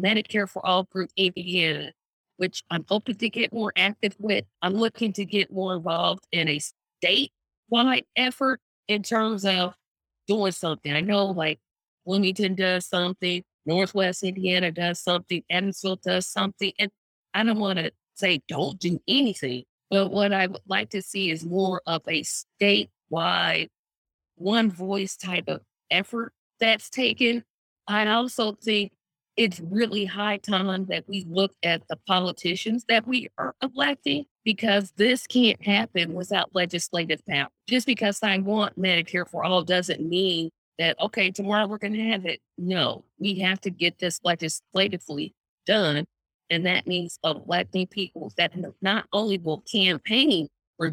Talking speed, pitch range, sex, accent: 150 wpm, 175-210 Hz, female, American